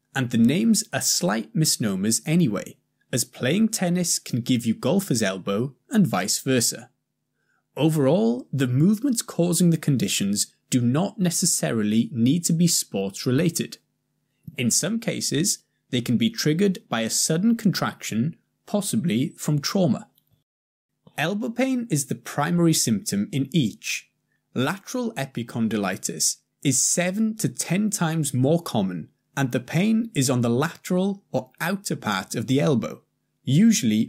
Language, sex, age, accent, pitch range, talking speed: English, male, 20-39, British, 130-195 Hz, 135 wpm